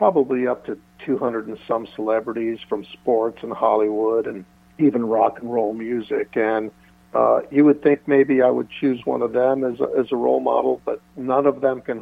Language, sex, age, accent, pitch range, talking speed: English, male, 60-79, American, 110-130 Hz, 200 wpm